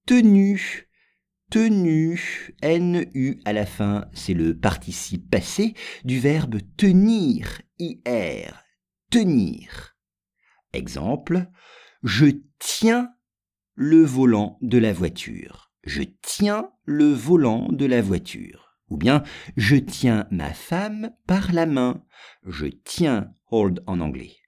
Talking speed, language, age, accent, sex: 110 wpm, English, 50-69, French, male